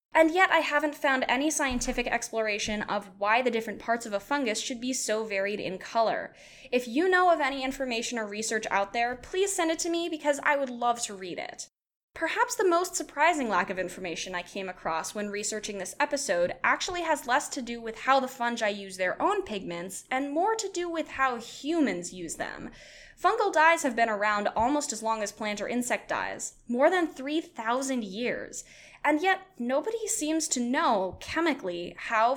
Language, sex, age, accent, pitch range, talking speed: English, female, 10-29, American, 210-310 Hz, 195 wpm